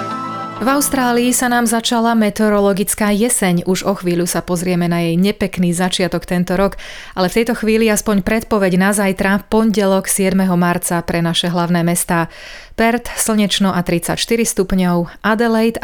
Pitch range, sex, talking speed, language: 175-215 Hz, female, 150 wpm, Slovak